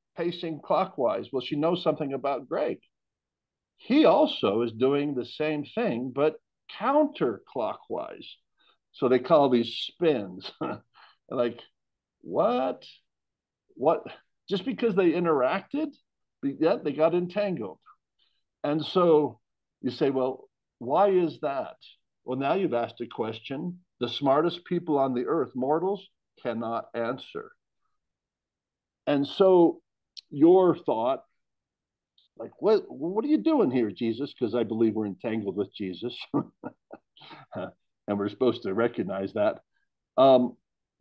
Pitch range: 120-190 Hz